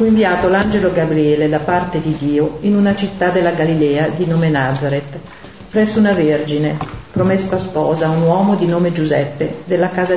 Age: 50-69